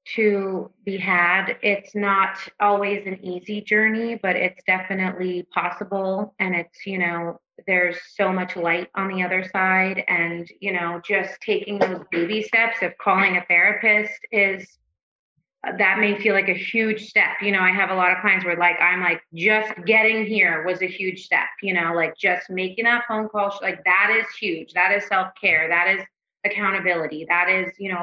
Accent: American